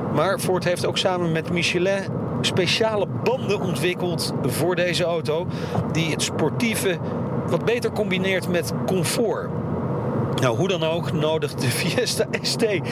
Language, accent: Dutch, Dutch